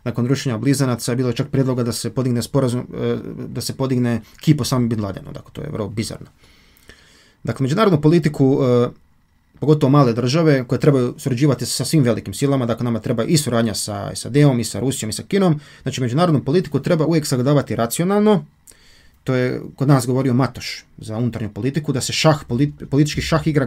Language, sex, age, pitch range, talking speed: Croatian, male, 30-49, 115-150 Hz, 180 wpm